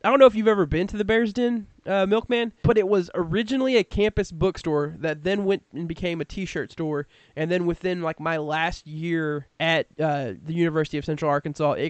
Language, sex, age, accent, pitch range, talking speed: English, male, 20-39, American, 150-190 Hz, 210 wpm